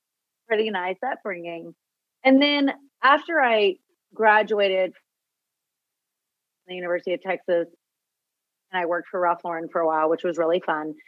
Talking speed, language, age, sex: 140 wpm, English, 30-49, female